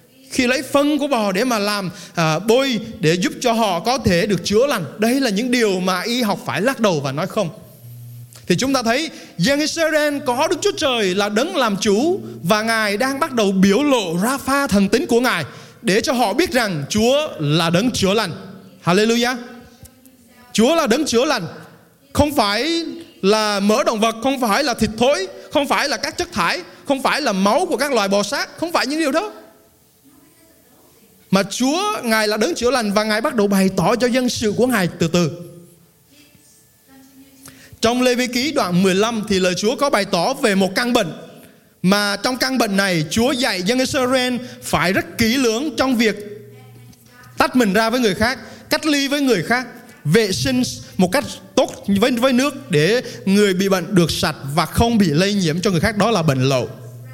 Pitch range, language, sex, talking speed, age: 185-255 Hz, Vietnamese, male, 200 wpm, 20-39